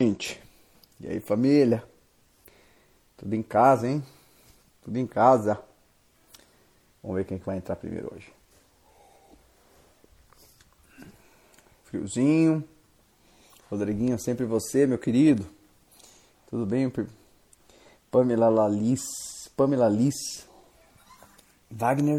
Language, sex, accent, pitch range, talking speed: Portuguese, male, Brazilian, 110-135 Hz, 85 wpm